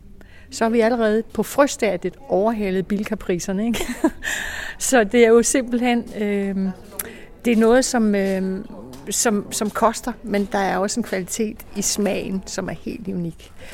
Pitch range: 180-225 Hz